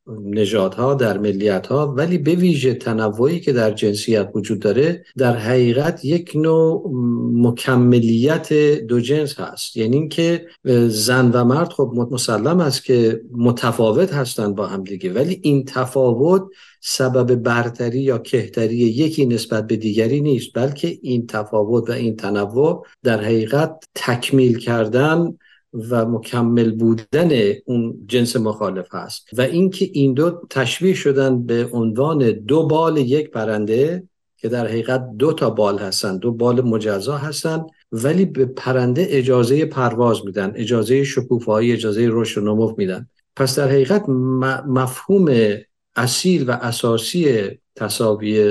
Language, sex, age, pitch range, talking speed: Persian, male, 50-69, 115-140 Hz, 130 wpm